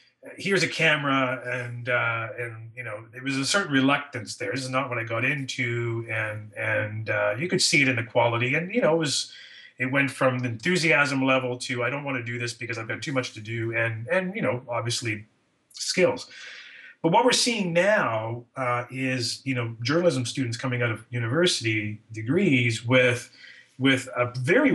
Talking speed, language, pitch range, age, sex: 200 wpm, English, 115-150 Hz, 30-49, male